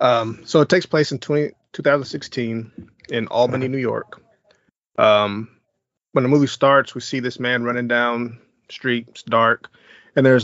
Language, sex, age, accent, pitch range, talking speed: English, male, 30-49, American, 115-135 Hz, 150 wpm